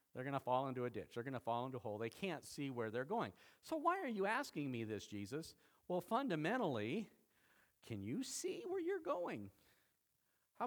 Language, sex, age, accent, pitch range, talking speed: English, male, 50-69, American, 115-165 Hz, 210 wpm